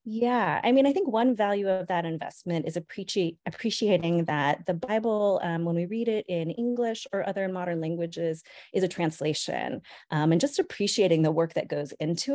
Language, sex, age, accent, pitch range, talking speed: English, female, 30-49, American, 155-195 Hz, 185 wpm